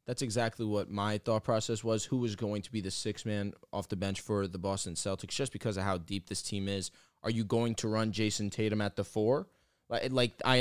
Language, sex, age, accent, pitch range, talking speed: English, male, 20-39, American, 105-125 Hz, 240 wpm